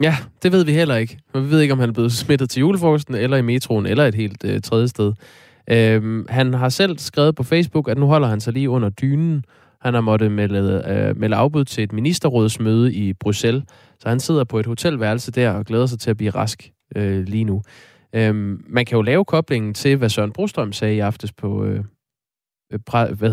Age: 20-39